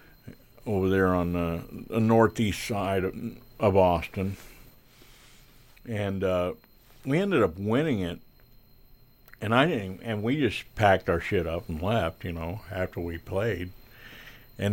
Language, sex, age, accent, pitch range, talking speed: English, male, 50-69, American, 95-120 Hz, 140 wpm